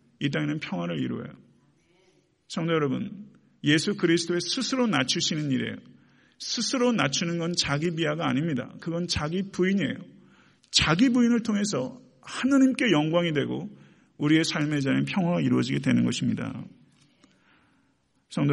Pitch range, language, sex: 130-175 Hz, Korean, male